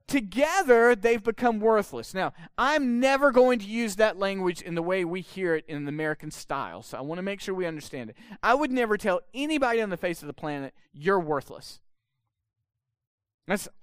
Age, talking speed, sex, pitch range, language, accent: 40-59, 195 wpm, male, 155-245 Hz, English, American